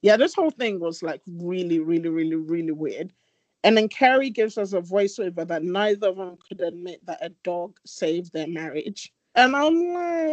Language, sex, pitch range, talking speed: English, male, 175-235 Hz, 190 wpm